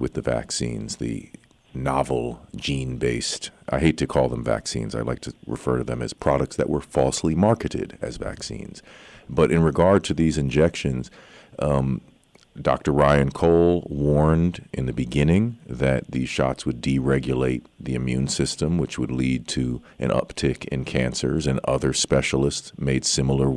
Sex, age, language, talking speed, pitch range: male, 40-59, English, 155 wpm, 65-75 Hz